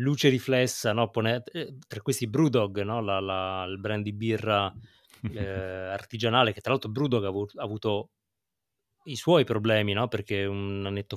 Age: 30-49